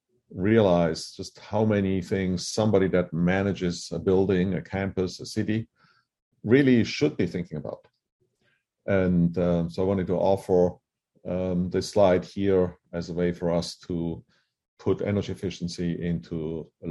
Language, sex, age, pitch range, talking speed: English, male, 50-69, 85-105 Hz, 145 wpm